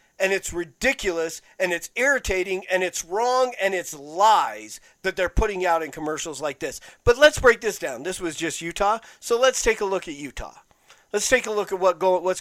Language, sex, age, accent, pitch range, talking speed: English, male, 50-69, American, 155-195 Hz, 215 wpm